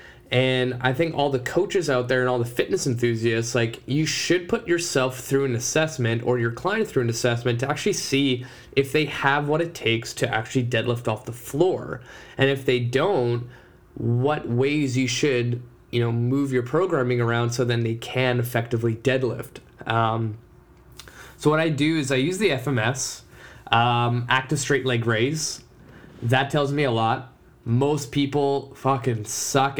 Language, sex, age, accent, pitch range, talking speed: English, male, 20-39, American, 120-140 Hz, 175 wpm